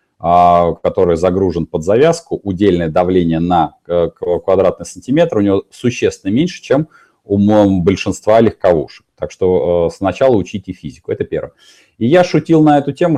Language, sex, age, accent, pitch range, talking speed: Russian, male, 30-49, native, 90-125 Hz, 135 wpm